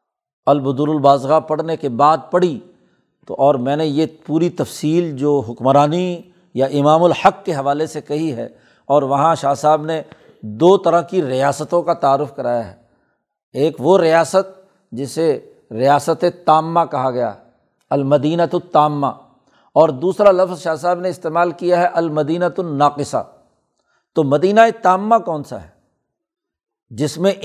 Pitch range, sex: 145-180 Hz, male